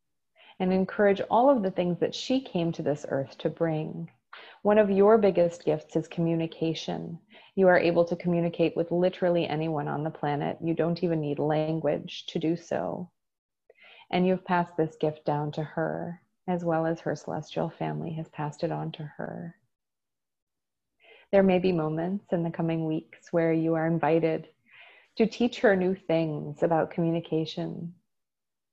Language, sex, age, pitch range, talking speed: English, female, 30-49, 160-185 Hz, 165 wpm